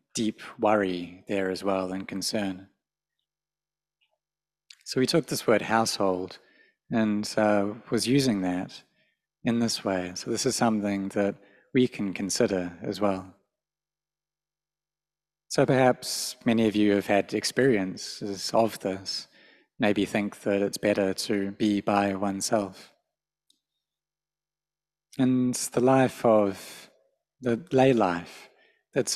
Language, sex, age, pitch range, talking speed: English, male, 30-49, 95-125 Hz, 120 wpm